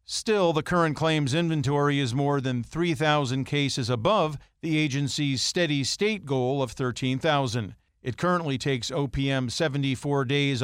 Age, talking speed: 50-69, 135 wpm